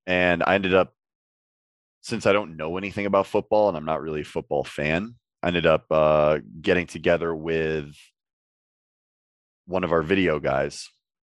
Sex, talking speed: male, 160 wpm